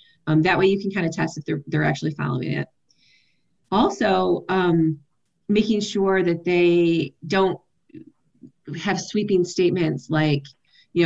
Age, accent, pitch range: 30-49, American, 160-200 Hz